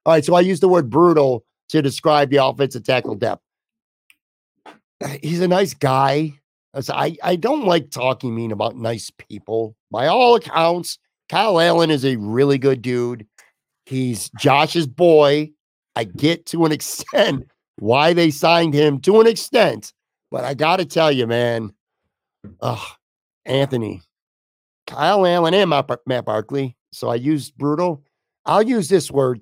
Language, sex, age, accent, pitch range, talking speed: English, male, 50-69, American, 130-175 Hz, 155 wpm